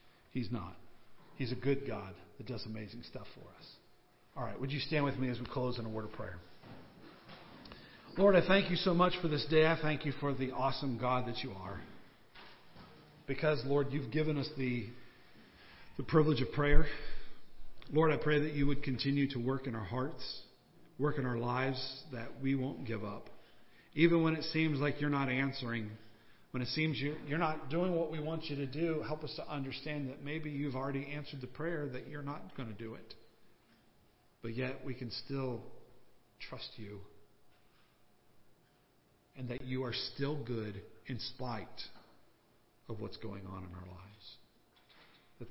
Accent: American